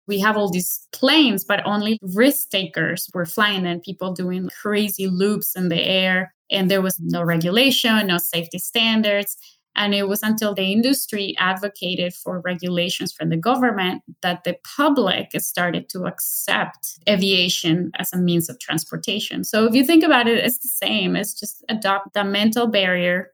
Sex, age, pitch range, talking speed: female, 20-39, 180-215 Hz, 170 wpm